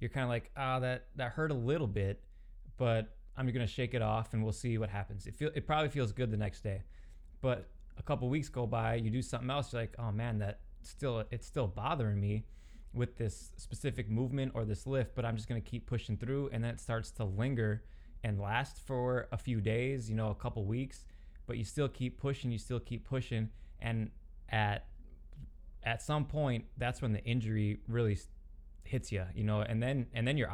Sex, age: male, 20-39